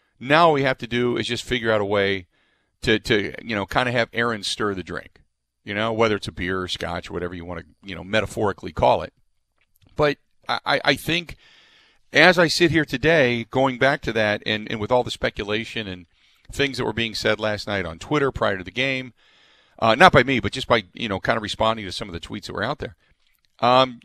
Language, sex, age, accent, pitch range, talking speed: English, male, 40-59, American, 105-130 Hz, 240 wpm